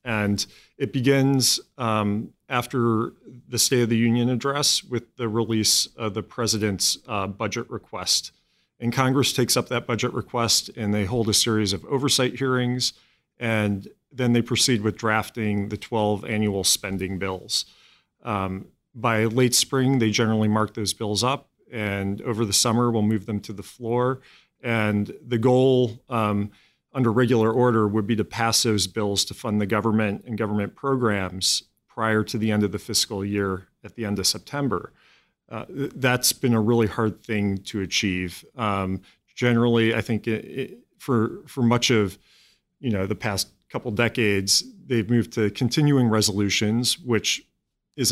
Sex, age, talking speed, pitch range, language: male, 40-59, 160 wpm, 105-120 Hz, English